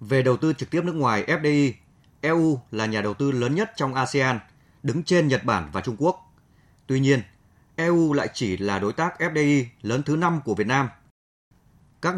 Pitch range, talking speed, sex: 115-145 Hz, 195 wpm, male